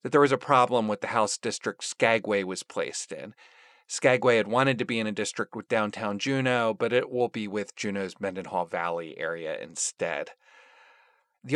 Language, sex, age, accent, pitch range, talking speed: English, male, 40-59, American, 110-150 Hz, 180 wpm